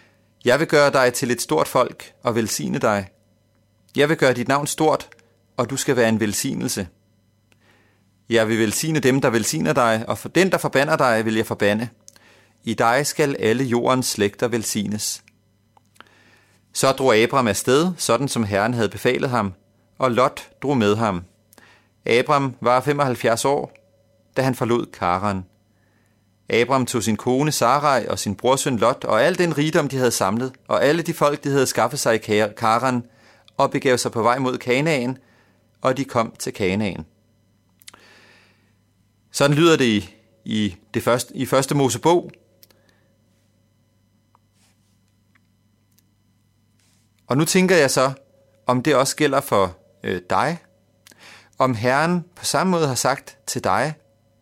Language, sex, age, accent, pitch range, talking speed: Danish, male, 30-49, native, 105-130 Hz, 150 wpm